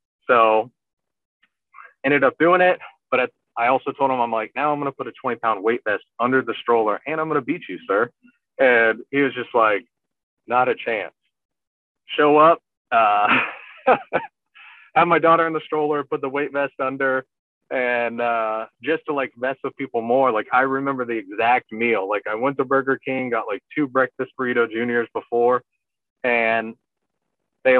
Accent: American